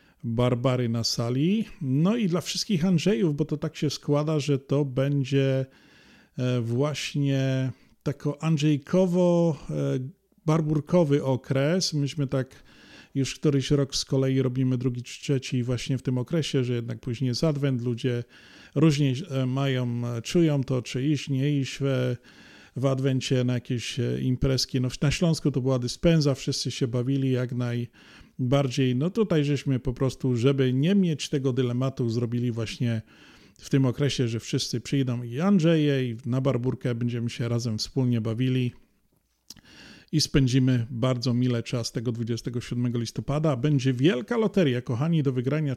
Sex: male